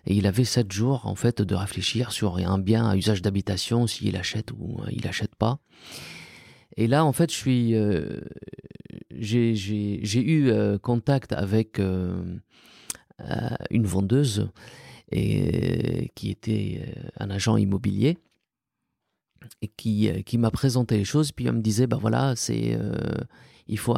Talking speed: 145 wpm